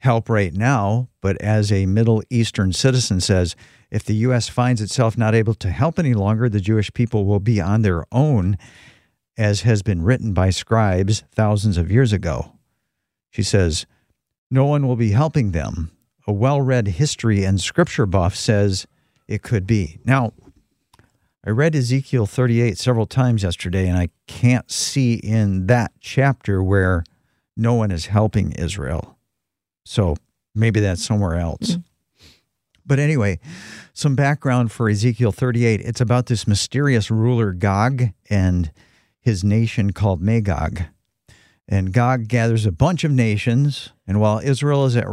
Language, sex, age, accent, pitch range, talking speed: English, male, 50-69, American, 100-125 Hz, 150 wpm